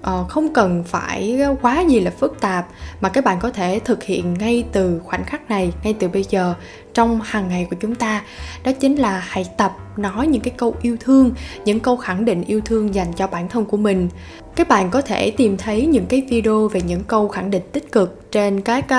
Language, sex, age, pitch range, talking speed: Vietnamese, female, 10-29, 190-250 Hz, 230 wpm